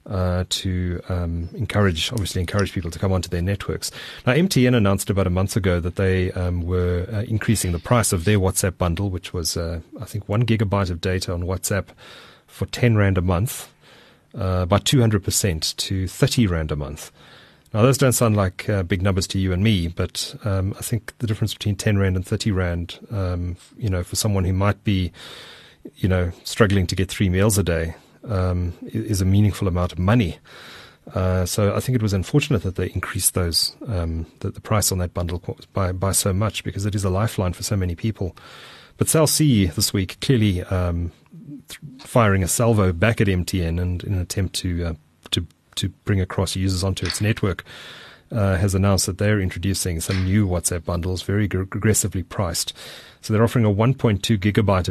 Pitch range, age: 90-105 Hz, 30-49